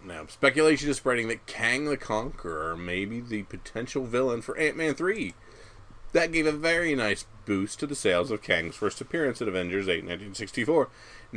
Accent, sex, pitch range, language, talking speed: American, male, 95-120 Hz, English, 175 wpm